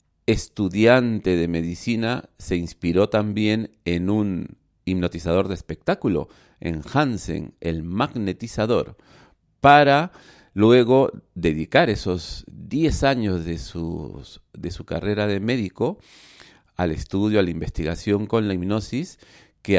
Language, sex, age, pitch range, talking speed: Spanish, male, 50-69, 85-110 Hz, 110 wpm